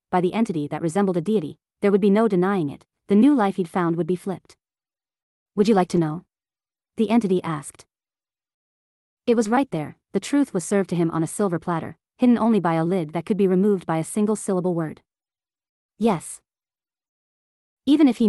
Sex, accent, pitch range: female, American, 170-210 Hz